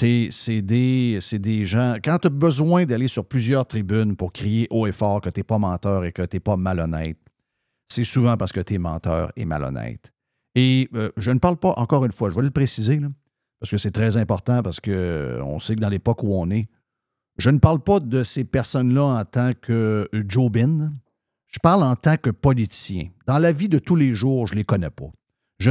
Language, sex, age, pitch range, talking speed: French, male, 50-69, 105-135 Hz, 220 wpm